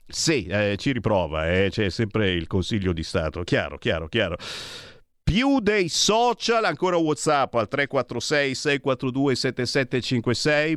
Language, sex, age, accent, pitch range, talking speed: Italian, male, 50-69, native, 95-140 Hz, 130 wpm